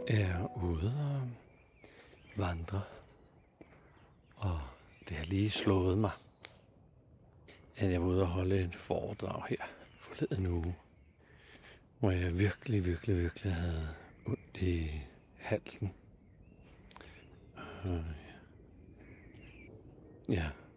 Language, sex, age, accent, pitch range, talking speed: Danish, male, 60-79, native, 90-105 Hz, 90 wpm